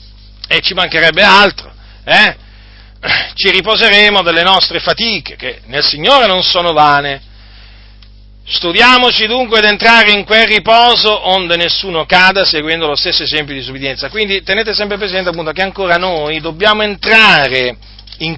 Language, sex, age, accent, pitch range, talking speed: Italian, male, 40-59, native, 135-190 Hz, 140 wpm